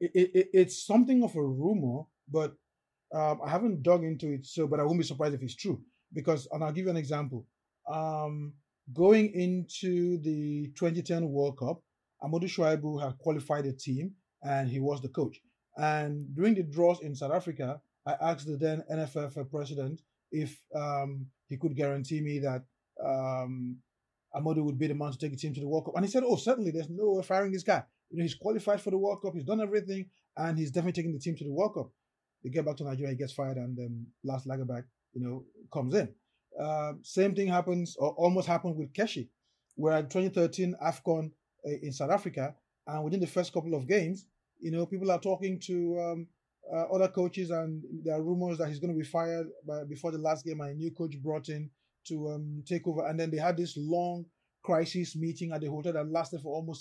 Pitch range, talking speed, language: 145-175 Hz, 210 wpm, English